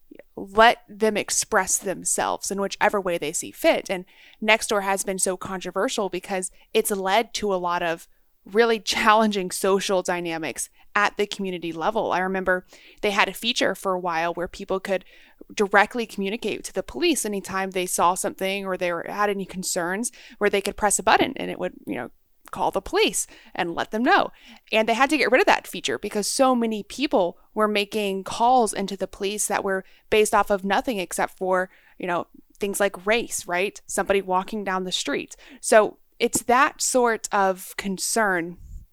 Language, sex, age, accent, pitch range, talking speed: English, female, 20-39, American, 190-220 Hz, 185 wpm